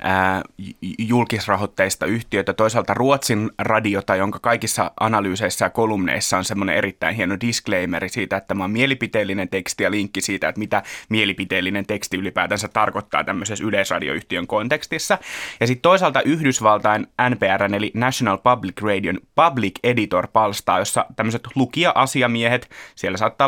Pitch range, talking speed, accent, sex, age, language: 100-120 Hz, 130 wpm, native, male, 20-39, Finnish